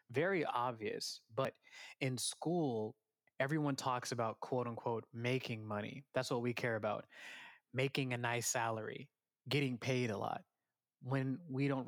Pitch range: 120-140 Hz